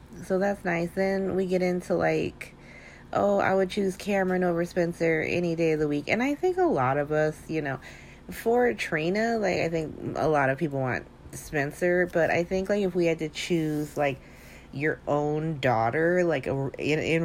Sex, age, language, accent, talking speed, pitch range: female, 30-49, English, American, 200 wpm, 150-190 Hz